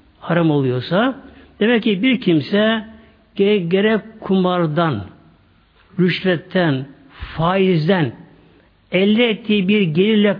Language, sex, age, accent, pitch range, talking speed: Turkish, male, 60-79, native, 150-215 Hz, 85 wpm